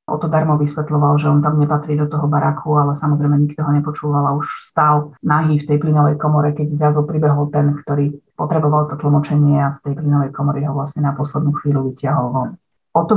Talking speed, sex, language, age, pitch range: 205 wpm, female, Slovak, 30-49, 150-165 Hz